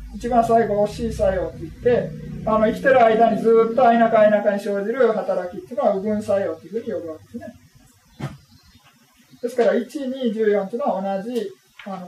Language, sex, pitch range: Japanese, male, 195-245 Hz